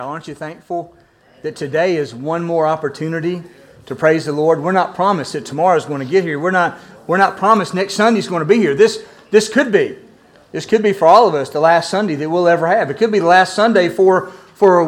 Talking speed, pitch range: 240 wpm, 150-195 Hz